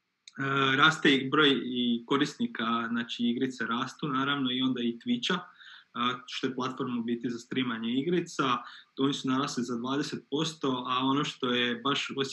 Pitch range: 120-140 Hz